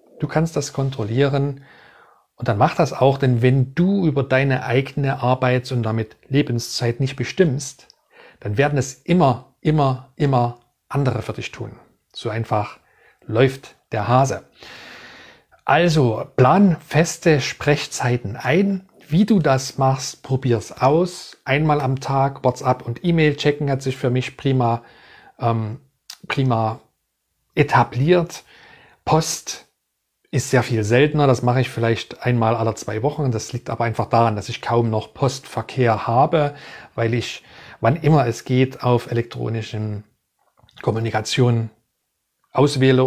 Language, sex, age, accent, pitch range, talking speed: German, male, 40-59, German, 120-145 Hz, 135 wpm